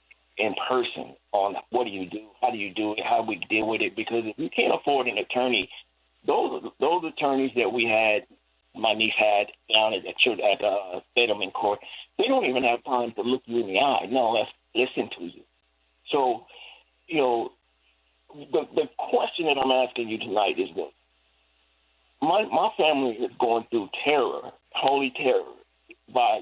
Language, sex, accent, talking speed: English, male, American, 175 wpm